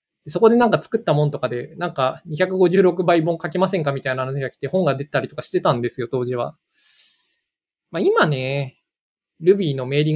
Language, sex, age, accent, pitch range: Japanese, male, 20-39, native, 130-190 Hz